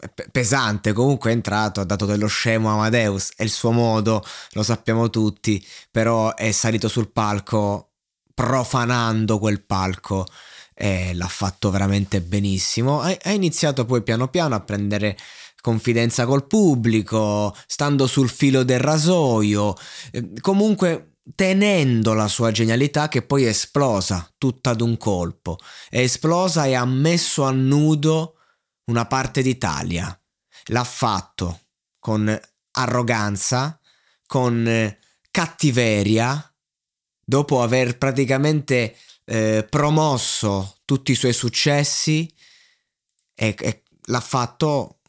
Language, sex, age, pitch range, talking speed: Italian, male, 20-39, 105-135 Hz, 115 wpm